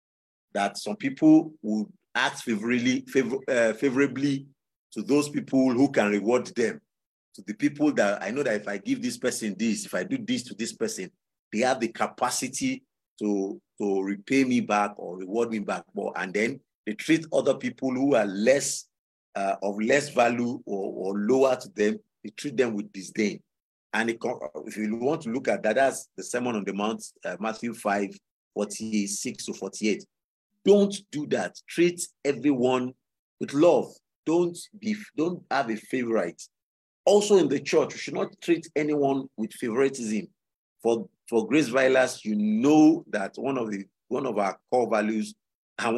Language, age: English, 50-69